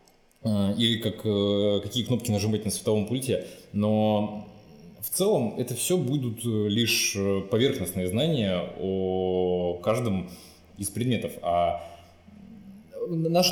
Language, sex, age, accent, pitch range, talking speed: Russian, male, 20-39, native, 95-120 Hz, 100 wpm